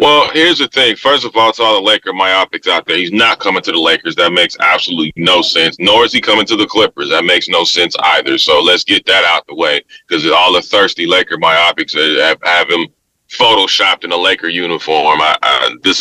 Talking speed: 220 wpm